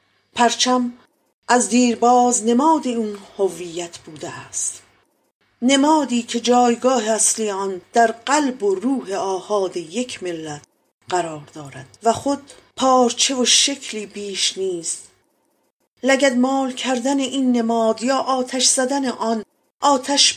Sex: female